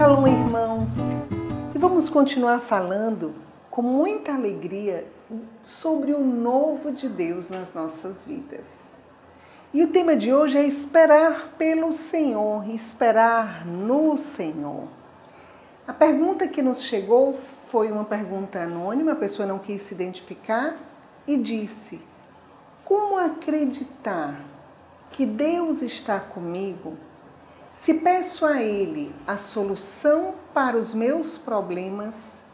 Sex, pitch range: female, 200-290 Hz